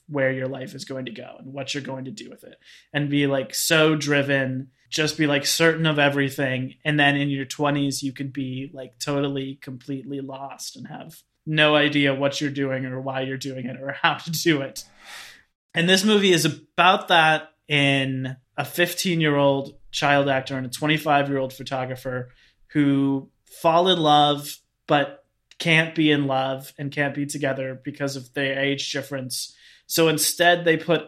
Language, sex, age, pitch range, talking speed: English, male, 20-39, 135-155 Hz, 185 wpm